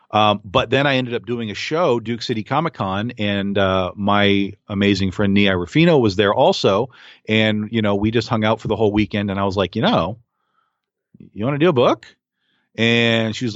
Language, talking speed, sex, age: English, 215 wpm, male, 40-59